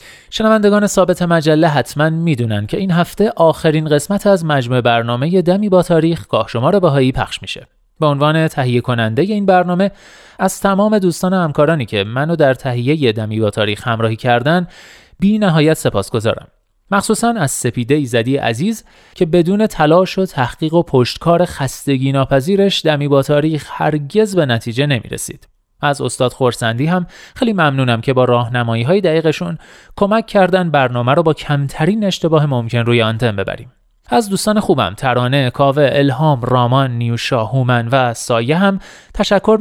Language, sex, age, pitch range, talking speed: Persian, male, 30-49, 125-185 Hz, 155 wpm